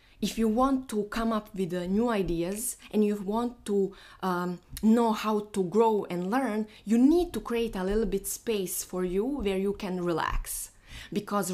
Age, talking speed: 20-39, 180 wpm